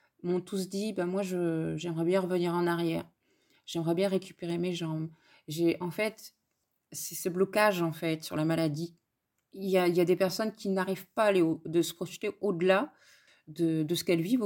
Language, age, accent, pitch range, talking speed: French, 20-39, French, 165-210 Hz, 210 wpm